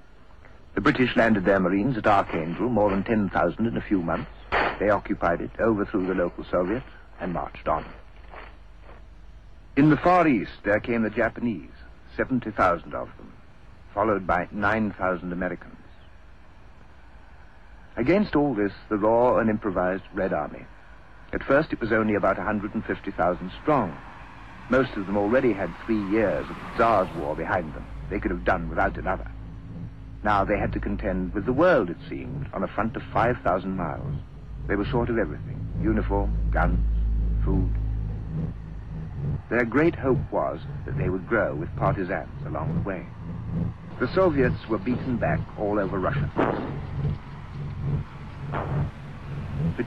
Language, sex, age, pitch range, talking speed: English, male, 60-79, 90-115 Hz, 145 wpm